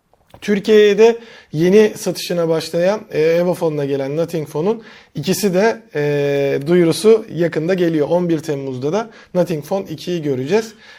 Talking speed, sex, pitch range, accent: 110 wpm, male, 150-195 Hz, native